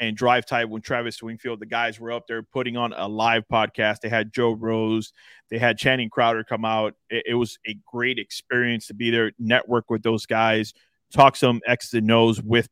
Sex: male